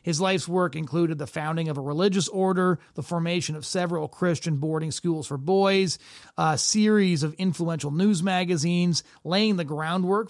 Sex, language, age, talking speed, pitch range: male, English, 30-49, 165 wpm, 150-185 Hz